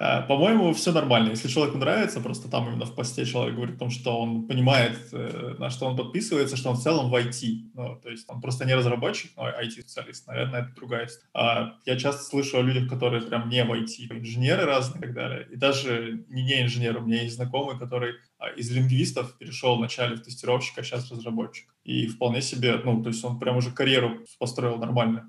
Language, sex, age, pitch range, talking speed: Russian, male, 20-39, 120-145 Hz, 210 wpm